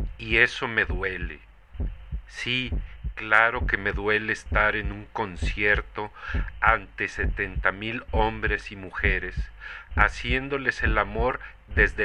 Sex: male